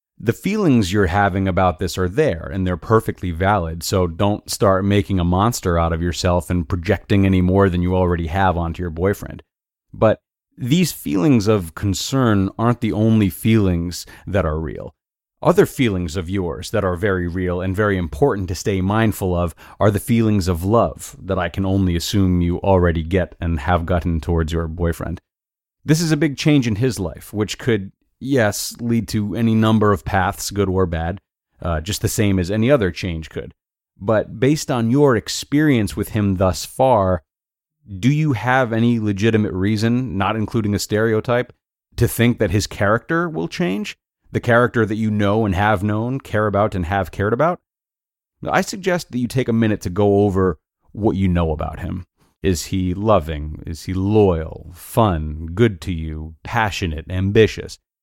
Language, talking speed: English, 180 wpm